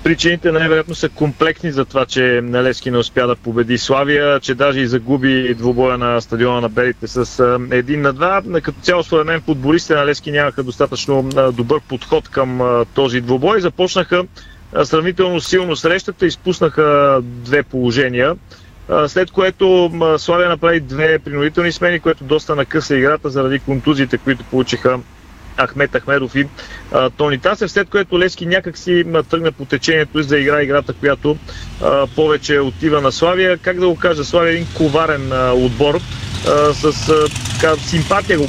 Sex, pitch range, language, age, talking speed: male, 130-160 Hz, Bulgarian, 40-59, 160 wpm